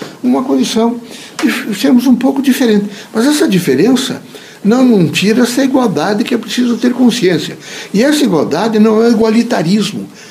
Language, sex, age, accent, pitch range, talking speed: Portuguese, male, 60-79, Brazilian, 165-235 Hz, 150 wpm